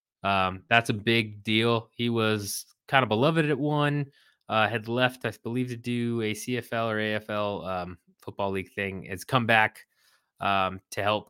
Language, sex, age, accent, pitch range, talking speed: English, male, 20-39, American, 100-130 Hz, 175 wpm